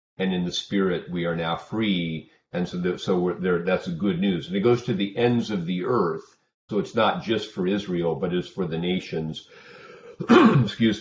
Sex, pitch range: male, 85-110 Hz